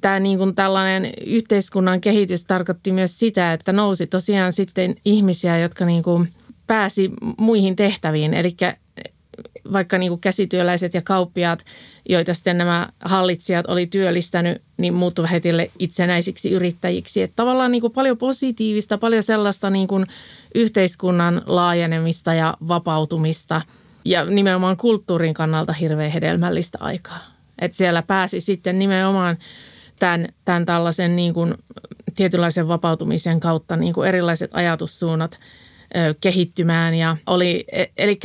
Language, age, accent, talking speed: Finnish, 30-49, native, 120 wpm